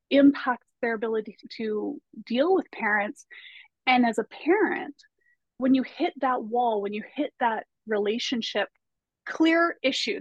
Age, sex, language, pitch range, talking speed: 30-49, female, English, 215-260 Hz, 135 wpm